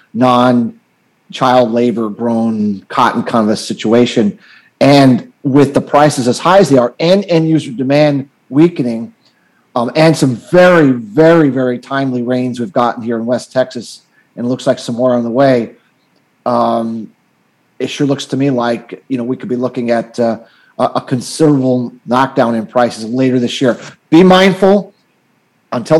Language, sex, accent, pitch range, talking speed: English, male, American, 125-145 Hz, 165 wpm